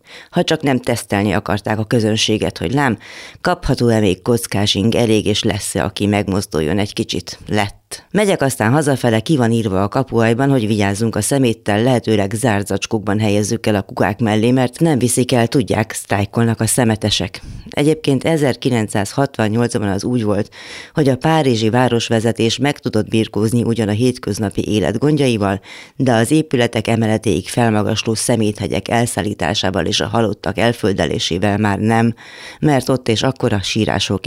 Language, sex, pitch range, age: Hungarian, female, 100-125 Hz, 30-49